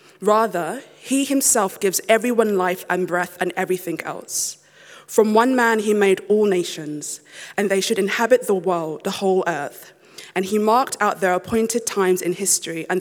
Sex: female